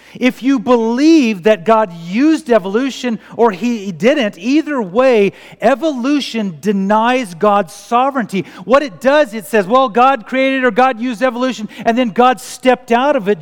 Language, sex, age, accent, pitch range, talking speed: English, male, 40-59, American, 145-235 Hz, 155 wpm